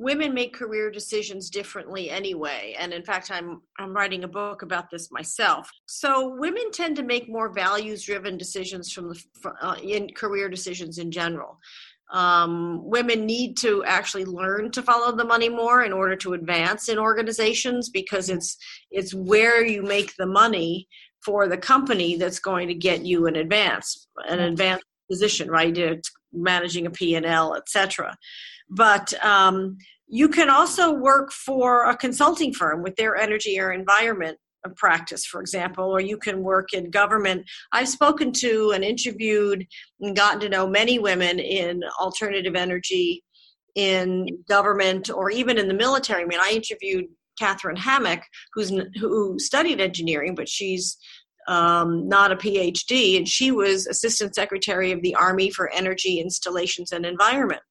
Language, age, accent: English, 50-69, American